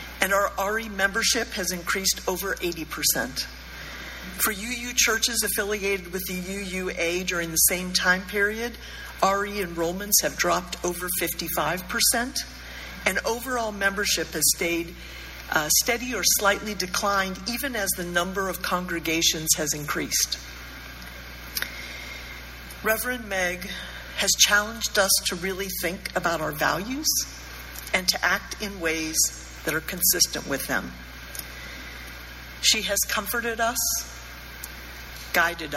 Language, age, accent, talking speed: English, 50-69, American, 115 wpm